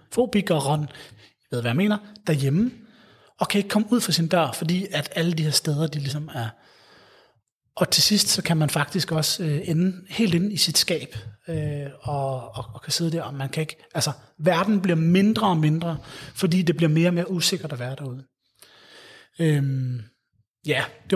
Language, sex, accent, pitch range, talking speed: Danish, male, native, 140-190 Hz, 200 wpm